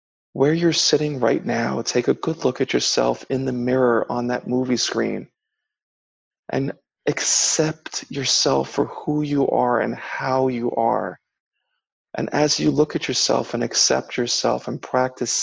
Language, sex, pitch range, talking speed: English, male, 115-140 Hz, 155 wpm